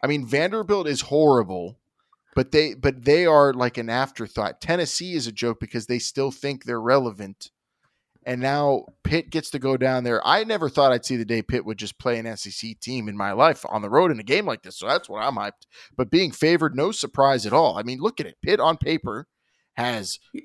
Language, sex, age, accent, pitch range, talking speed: English, male, 20-39, American, 115-135 Hz, 225 wpm